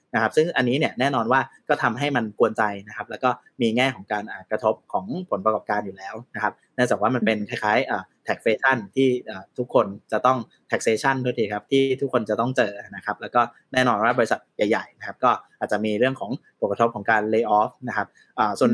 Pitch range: 110-135 Hz